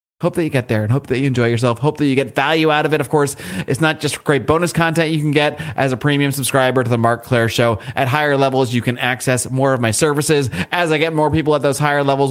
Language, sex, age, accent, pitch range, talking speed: English, male, 30-49, American, 125-160 Hz, 285 wpm